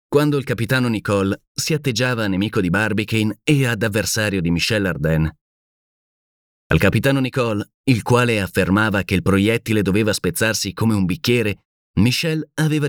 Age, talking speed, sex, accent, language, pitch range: 30-49, 145 wpm, male, native, Italian, 95-125 Hz